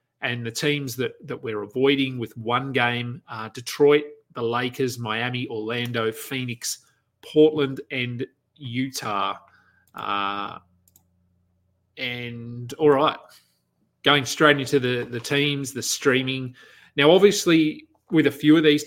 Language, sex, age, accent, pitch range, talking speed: English, male, 30-49, Australian, 115-140 Hz, 125 wpm